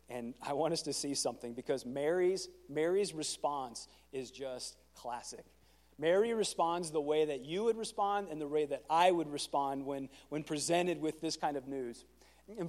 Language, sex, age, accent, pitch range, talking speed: English, male, 40-59, American, 150-215 Hz, 180 wpm